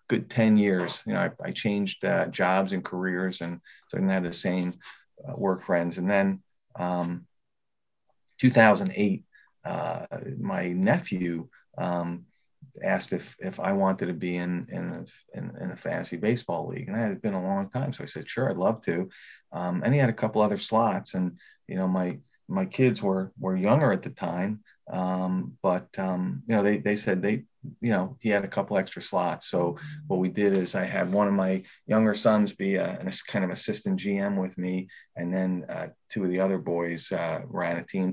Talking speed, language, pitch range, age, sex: 205 wpm, English, 90-105 Hz, 40-59, male